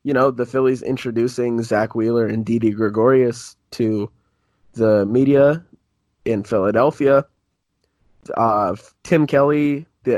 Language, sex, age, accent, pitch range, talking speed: English, male, 20-39, American, 105-125 Hz, 110 wpm